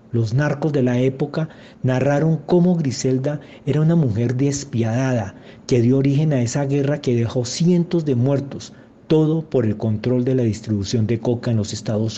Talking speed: 170 wpm